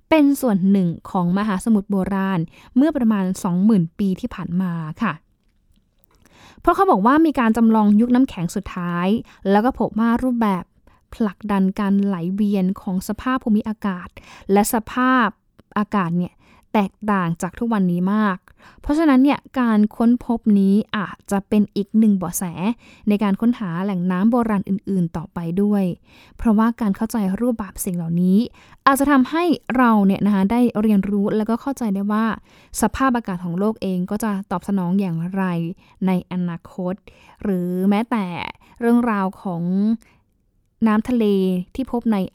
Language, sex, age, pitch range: Thai, female, 10-29, 185-230 Hz